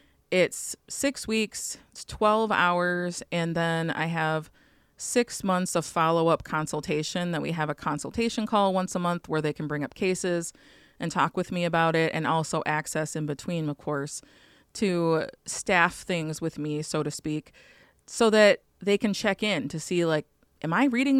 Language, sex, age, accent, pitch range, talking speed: English, female, 20-39, American, 160-200 Hz, 180 wpm